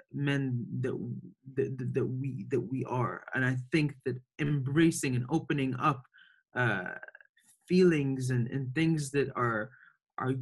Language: English